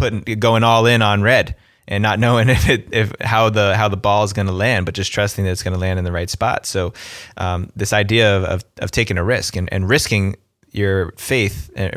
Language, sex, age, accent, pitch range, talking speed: English, male, 20-39, American, 95-110 Hz, 245 wpm